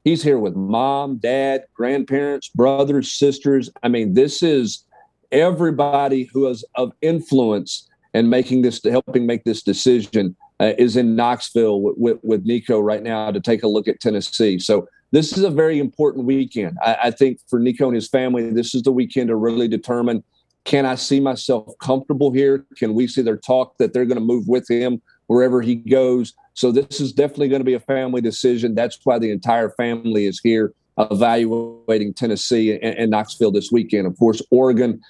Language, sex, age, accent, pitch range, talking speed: English, male, 50-69, American, 115-130 Hz, 190 wpm